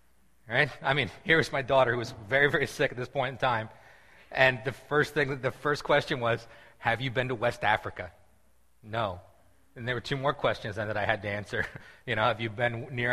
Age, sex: 30-49, male